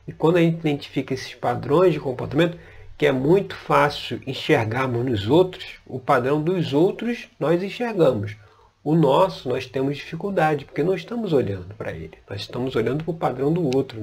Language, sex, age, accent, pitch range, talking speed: Portuguese, male, 40-59, Brazilian, 120-170 Hz, 175 wpm